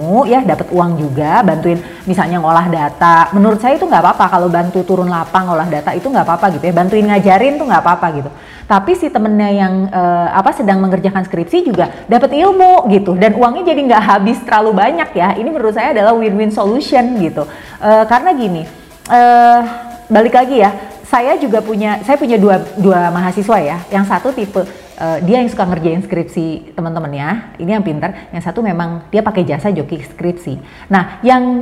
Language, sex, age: Indonesian, female, 30-49